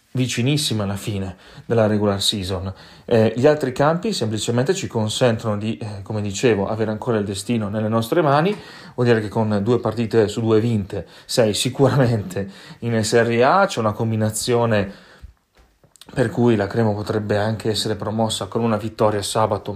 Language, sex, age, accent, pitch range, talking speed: Italian, male, 30-49, native, 105-125 Hz, 160 wpm